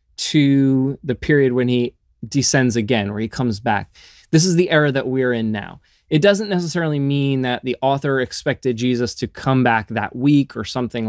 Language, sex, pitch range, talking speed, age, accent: English, male, 105-140 Hz, 190 wpm, 20-39, American